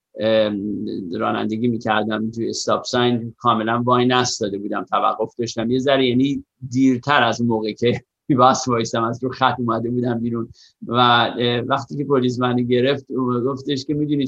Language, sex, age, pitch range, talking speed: Persian, male, 50-69, 120-140 Hz, 145 wpm